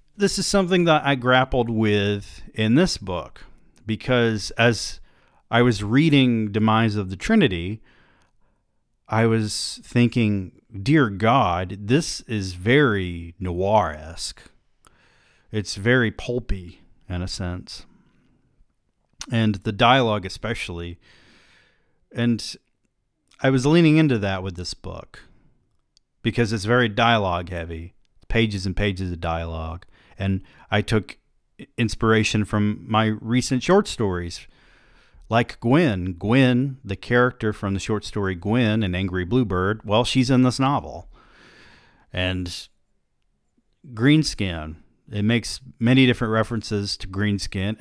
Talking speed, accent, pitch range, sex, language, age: 115 wpm, American, 95-120 Hz, male, English, 40-59